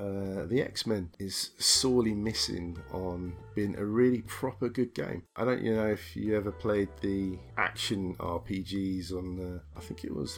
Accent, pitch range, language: British, 90-110 Hz, English